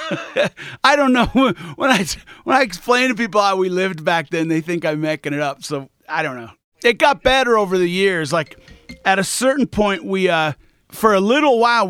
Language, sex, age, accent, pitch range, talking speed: English, male, 40-59, American, 160-220 Hz, 210 wpm